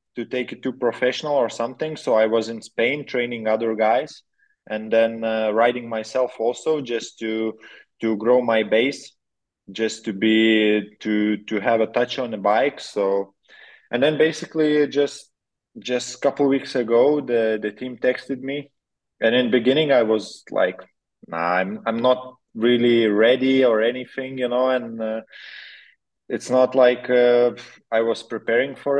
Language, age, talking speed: English, 20-39, 165 wpm